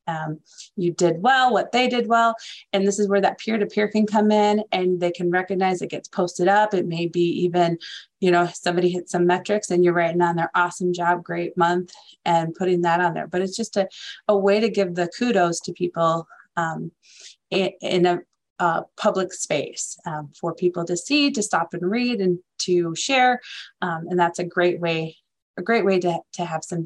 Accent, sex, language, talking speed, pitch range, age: American, female, English, 210 wpm, 170-200 Hz, 30-49